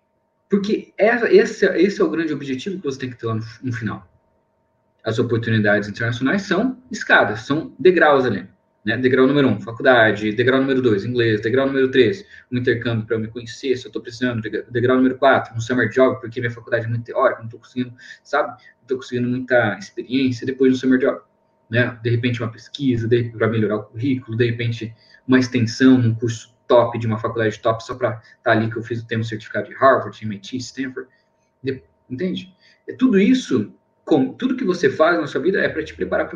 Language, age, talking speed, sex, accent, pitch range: Portuguese, 20-39, 205 wpm, male, Brazilian, 115-140 Hz